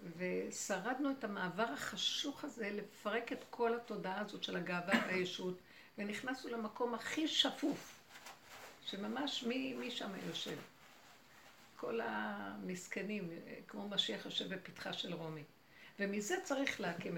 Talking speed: 115 wpm